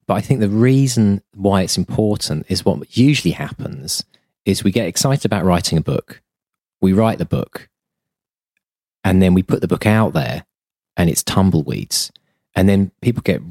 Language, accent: English, British